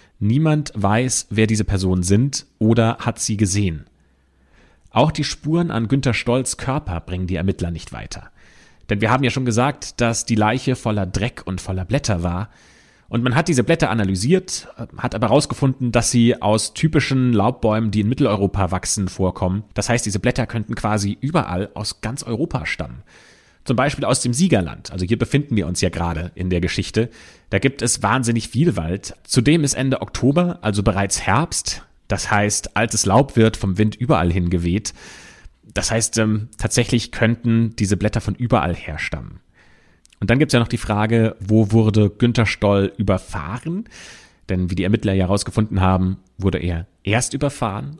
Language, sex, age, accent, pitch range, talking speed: German, male, 30-49, German, 95-125 Hz, 175 wpm